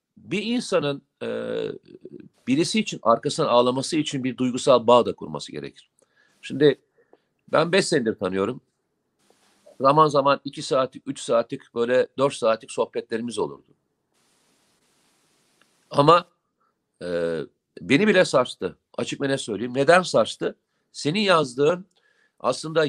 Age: 50-69